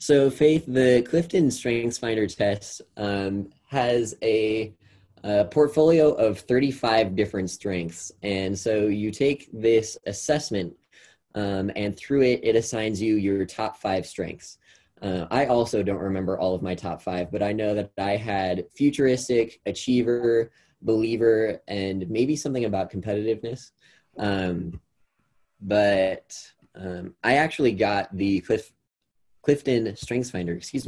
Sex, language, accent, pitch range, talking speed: male, English, American, 95-120 Hz, 130 wpm